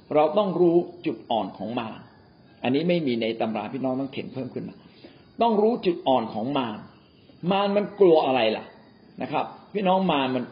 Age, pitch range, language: 60-79, 130-180 Hz, Thai